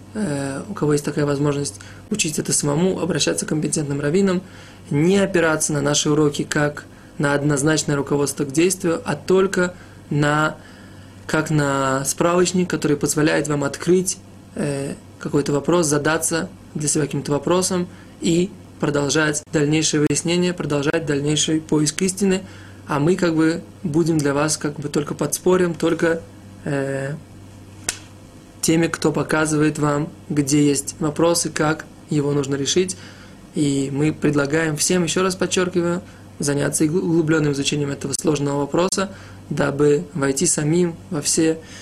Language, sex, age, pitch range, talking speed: Russian, male, 20-39, 145-165 Hz, 120 wpm